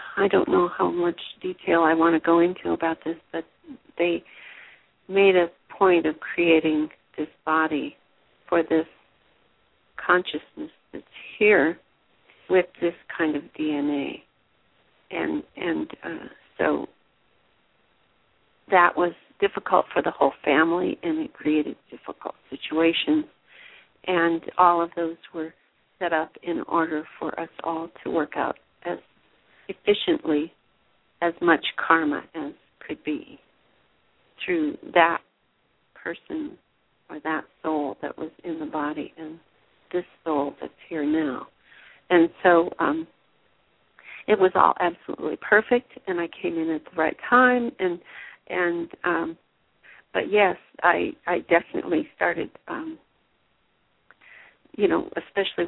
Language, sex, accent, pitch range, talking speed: English, female, American, 160-210 Hz, 125 wpm